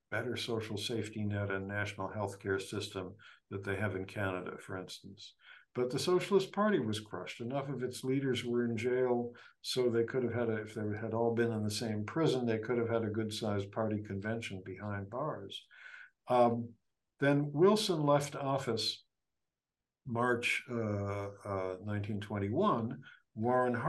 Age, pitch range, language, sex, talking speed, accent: 60-79, 105-135 Hz, English, male, 160 wpm, American